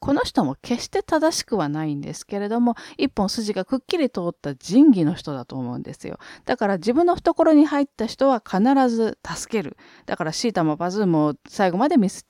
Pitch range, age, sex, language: 160-270 Hz, 40-59, female, Japanese